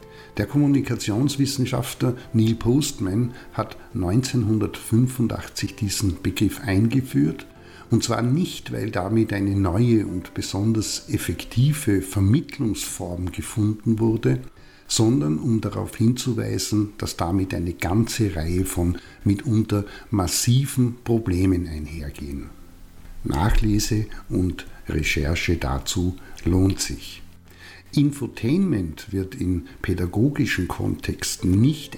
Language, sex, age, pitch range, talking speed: German, male, 50-69, 95-120 Hz, 90 wpm